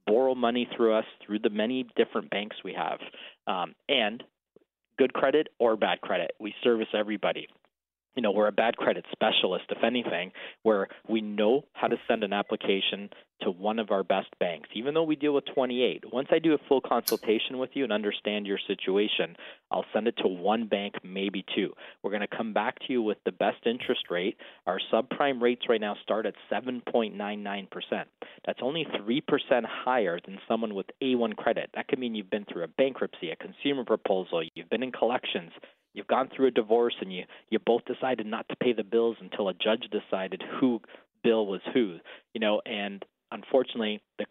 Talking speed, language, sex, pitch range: 210 wpm, English, male, 105-125 Hz